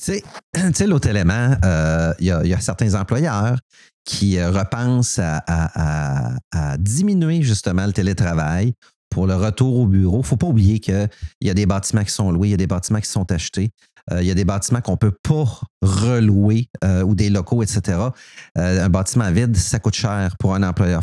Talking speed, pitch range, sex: 205 wpm, 95-115 Hz, male